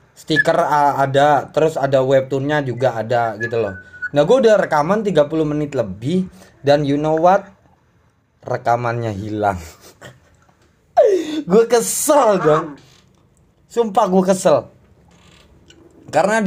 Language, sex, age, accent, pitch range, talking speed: Indonesian, male, 20-39, native, 120-160 Hz, 105 wpm